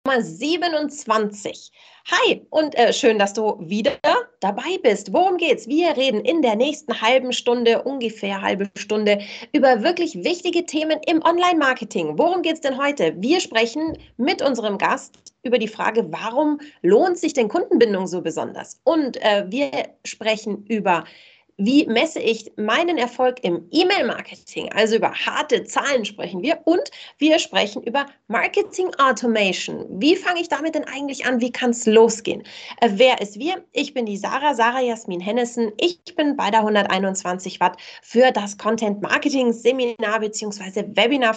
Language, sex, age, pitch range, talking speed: German, female, 30-49, 210-295 Hz, 150 wpm